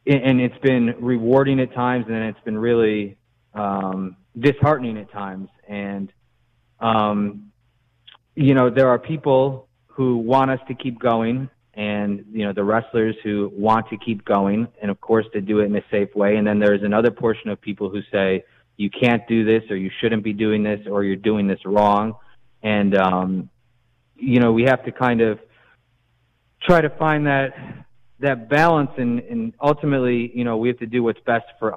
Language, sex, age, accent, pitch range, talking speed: English, male, 30-49, American, 105-125 Hz, 185 wpm